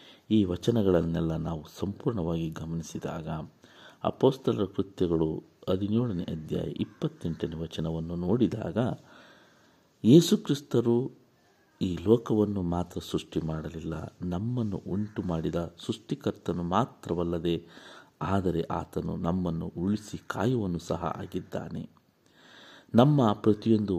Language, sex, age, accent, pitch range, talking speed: Kannada, male, 60-79, native, 85-105 Hz, 80 wpm